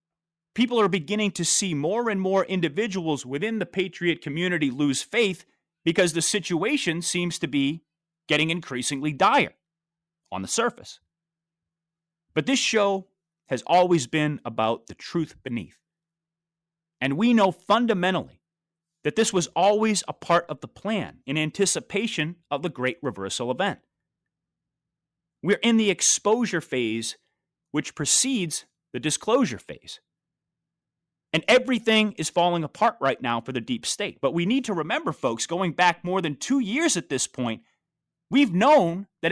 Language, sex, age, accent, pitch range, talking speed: English, male, 30-49, American, 155-205 Hz, 145 wpm